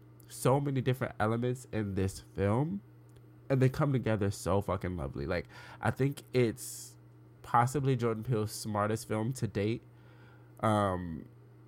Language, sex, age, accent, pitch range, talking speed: English, male, 20-39, American, 95-130 Hz, 135 wpm